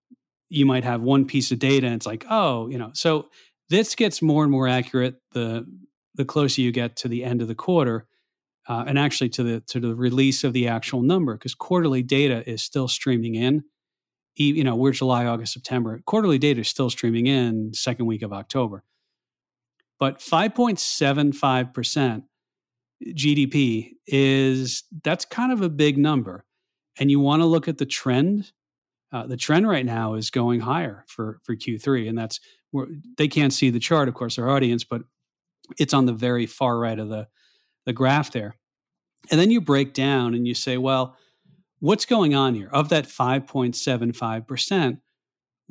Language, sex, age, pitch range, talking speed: English, male, 40-59, 120-145 Hz, 175 wpm